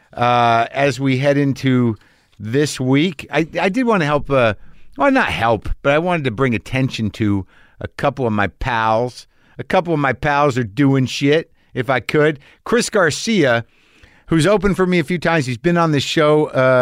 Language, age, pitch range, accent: English, 50-69, 110-150 Hz, American